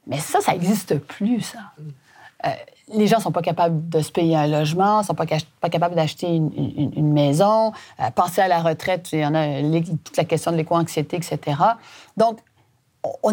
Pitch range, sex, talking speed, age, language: 160-205 Hz, female, 205 wpm, 30-49, French